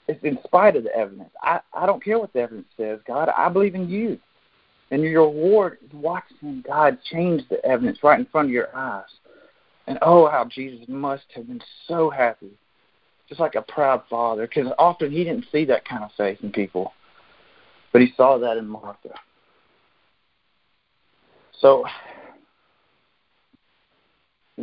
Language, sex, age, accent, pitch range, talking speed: English, male, 40-59, American, 115-160 Hz, 160 wpm